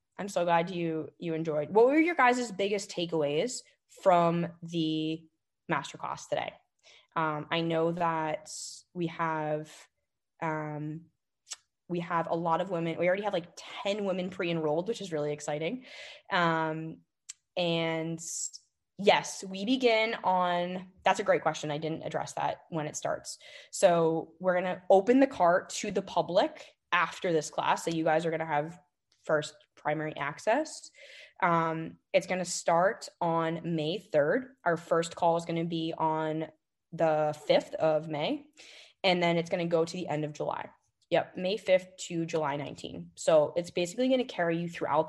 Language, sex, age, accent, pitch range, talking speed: English, female, 20-39, American, 155-185 Hz, 165 wpm